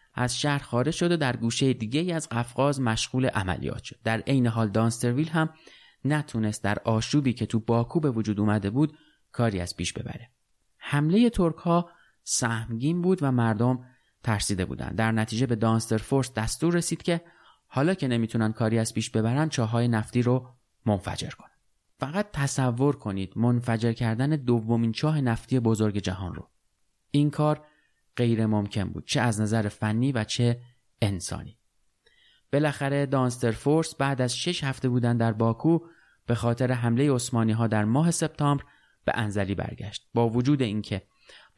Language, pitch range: Persian, 110-140 Hz